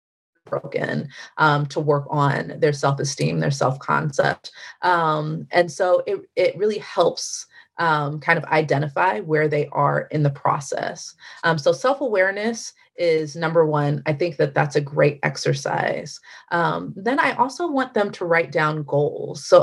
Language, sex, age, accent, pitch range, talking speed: English, female, 30-49, American, 155-195 Hz, 155 wpm